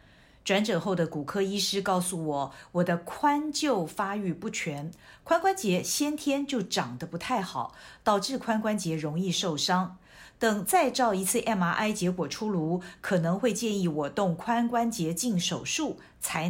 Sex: female